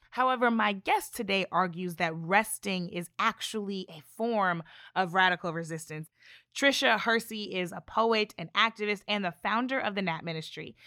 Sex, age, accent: female, 20-39, American